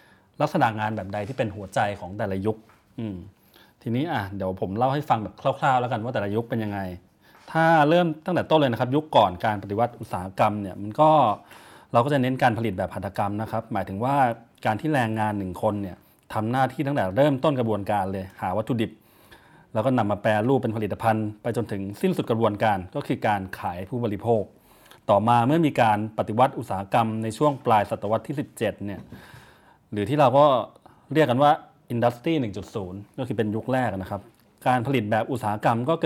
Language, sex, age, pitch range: Thai, male, 30-49, 105-135 Hz